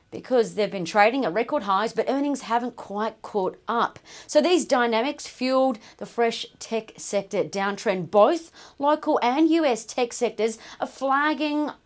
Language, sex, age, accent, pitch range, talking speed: English, female, 40-59, Australian, 210-290 Hz, 150 wpm